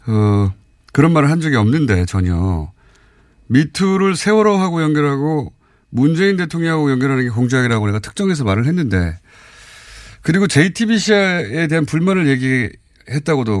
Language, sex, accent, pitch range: Korean, male, native, 115-175 Hz